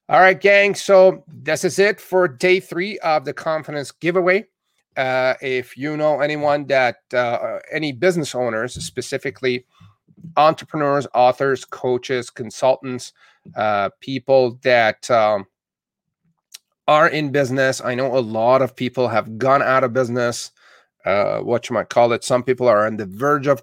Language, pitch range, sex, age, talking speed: English, 125-145 Hz, male, 30-49, 150 wpm